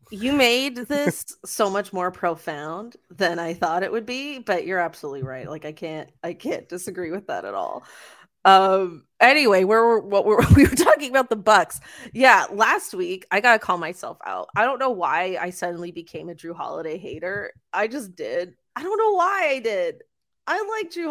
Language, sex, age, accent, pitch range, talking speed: English, female, 20-39, American, 175-245 Hz, 200 wpm